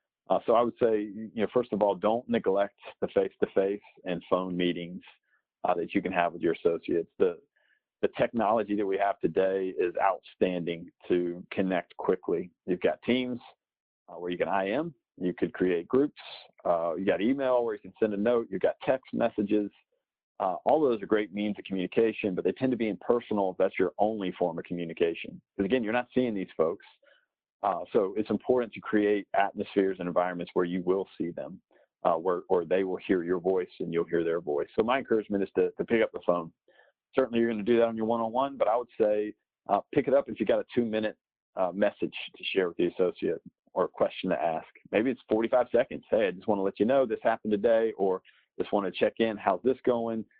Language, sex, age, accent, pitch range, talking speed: English, male, 50-69, American, 95-125 Hz, 225 wpm